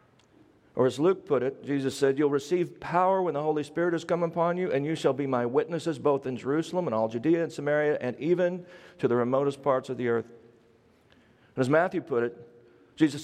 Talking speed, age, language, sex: 215 wpm, 40-59, English, male